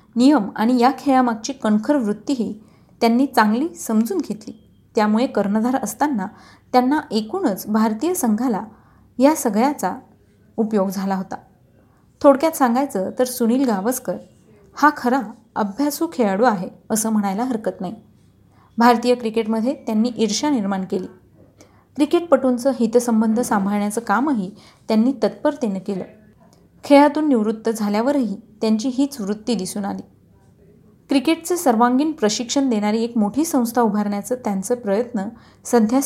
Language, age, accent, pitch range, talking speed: Marathi, 30-49, native, 210-260 Hz, 115 wpm